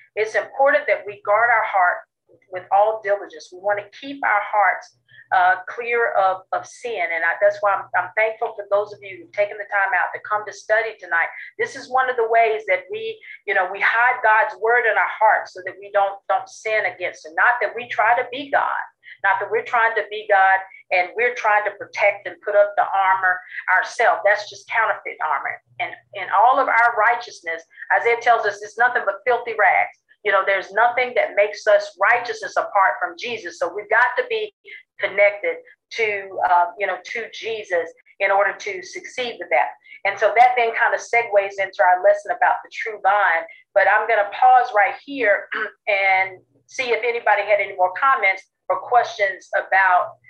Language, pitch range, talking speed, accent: English, 190-235 Hz, 205 wpm, American